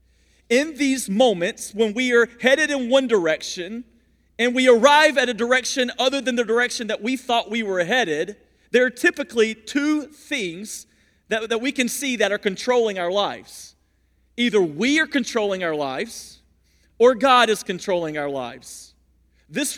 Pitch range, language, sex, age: 145-245 Hz, English, male, 40-59